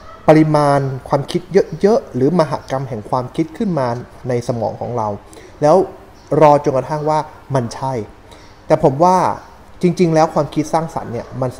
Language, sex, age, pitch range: Thai, male, 20-39, 115-165 Hz